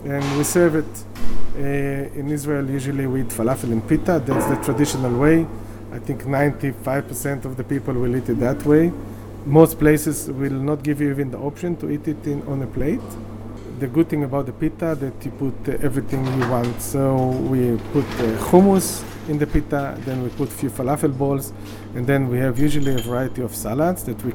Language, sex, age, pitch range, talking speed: Slovak, male, 50-69, 115-150 Hz, 205 wpm